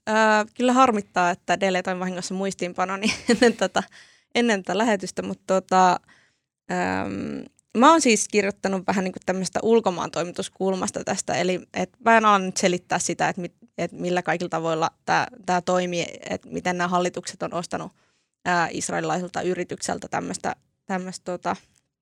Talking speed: 130 wpm